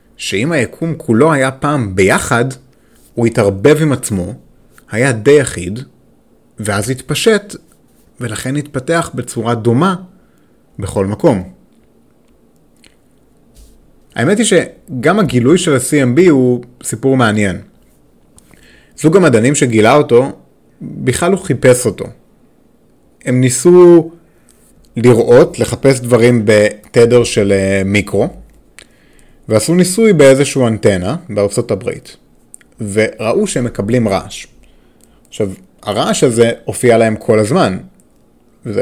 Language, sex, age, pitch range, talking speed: Hebrew, male, 30-49, 110-145 Hz, 100 wpm